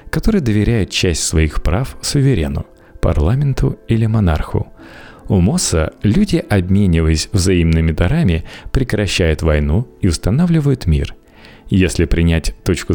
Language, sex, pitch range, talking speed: Russian, male, 80-115 Hz, 105 wpm